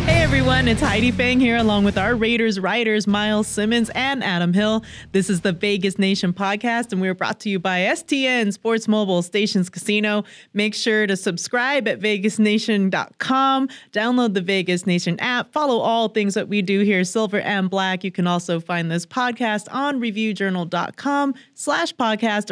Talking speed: 170 wpm